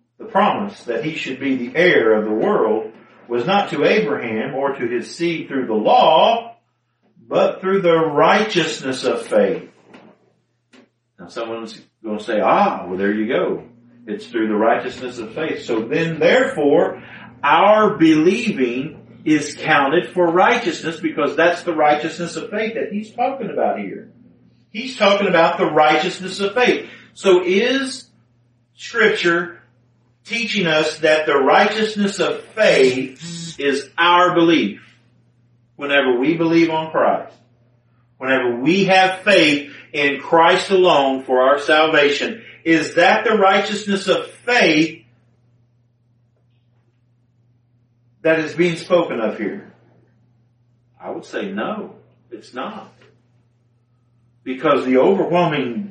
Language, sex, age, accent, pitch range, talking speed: English, male, 50-69, American, 120-175 Hz, 130 wpm